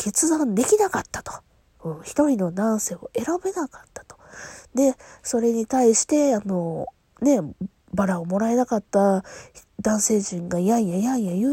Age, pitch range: 20-39, 185-275 Hz